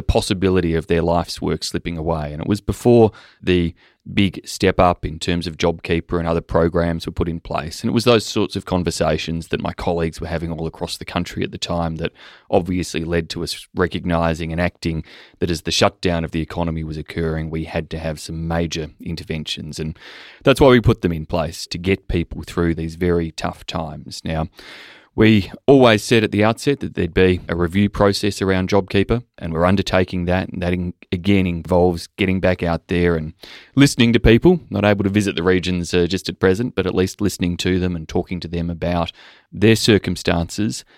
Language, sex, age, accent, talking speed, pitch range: English, male, 30-49, Australian, 205 wpm, 85-100 Hz